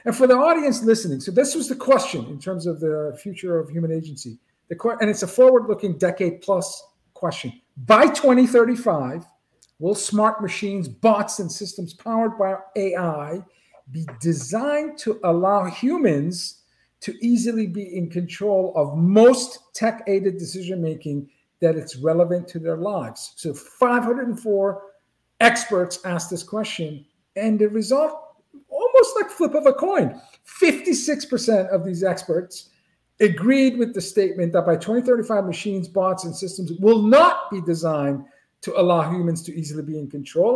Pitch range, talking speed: 175-240 Hz, 150 wpm